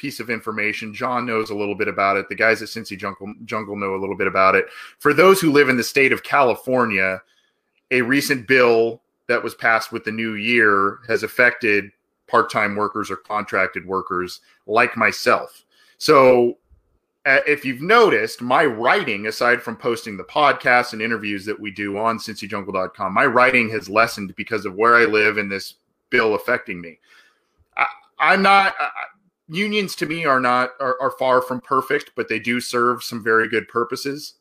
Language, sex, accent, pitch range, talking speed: English, male, American, 105-125 Hz, 180 wpm